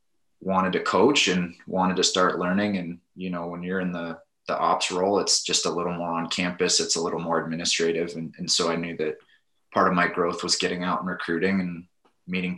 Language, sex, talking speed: English, male, 225 wpm